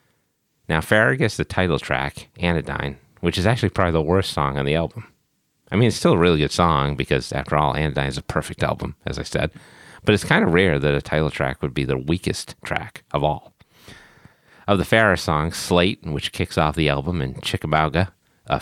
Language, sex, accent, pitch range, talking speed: English, male, American, 75-90 Hz, 210 wpm